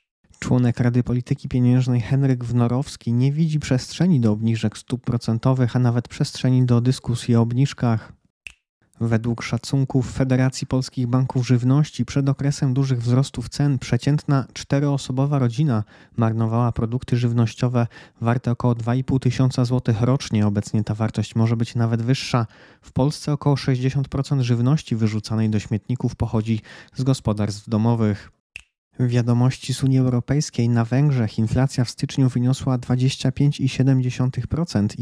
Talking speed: 125 wpm